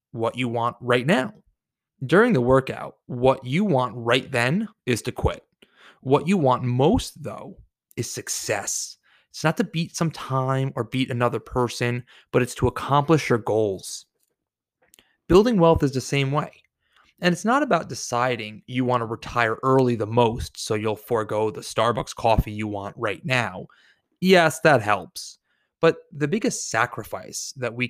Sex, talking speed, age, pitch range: male, 165 wpm, 30-49, 120-160 Hz